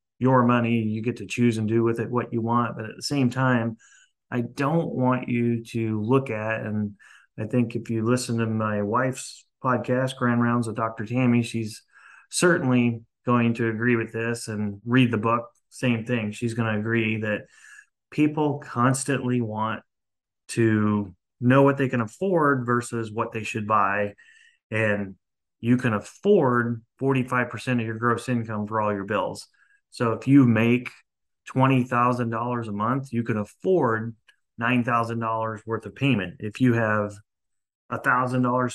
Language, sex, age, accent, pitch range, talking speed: English, male, 30-49, American, 110-130 Hz, 160 wpm